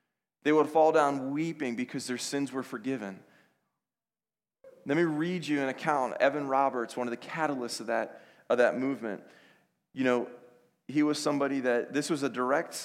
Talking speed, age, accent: 175 wpm, 30-49, American